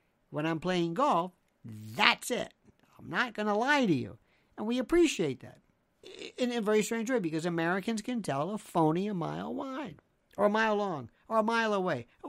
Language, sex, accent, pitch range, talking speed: English, male, American, 165-225 Hz, 195 wpm